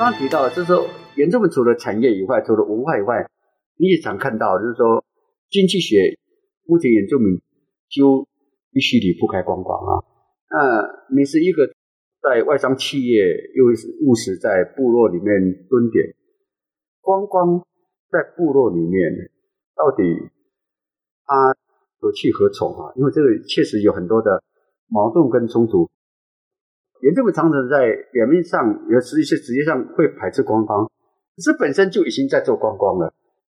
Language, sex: Chinese, male